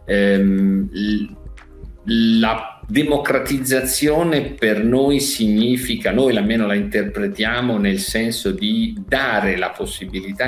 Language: Italian